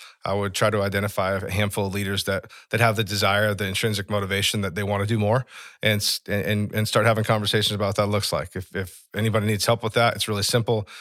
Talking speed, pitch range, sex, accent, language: 240 wpm, 100-120 Hz, male, American, English